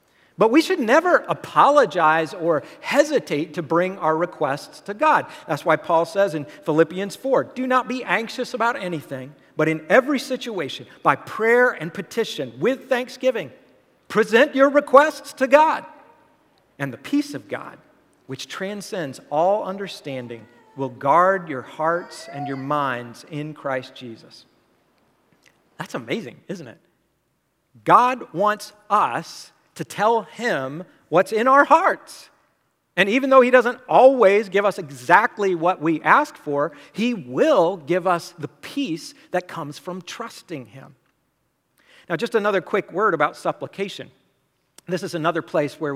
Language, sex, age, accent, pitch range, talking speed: English, male, 50-69, American, 150-225 Hz, 145 wpm